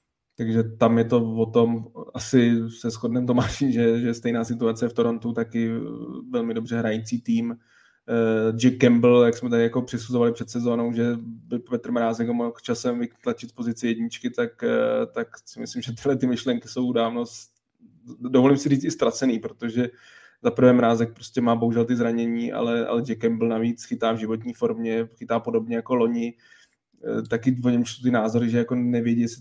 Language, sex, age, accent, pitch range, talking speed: Czech, male, 20-39, native, 115-130 Hz, 170 wpm